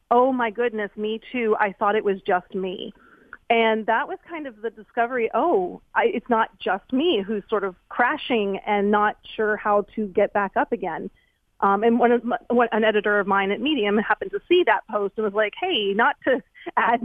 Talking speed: 215 wpm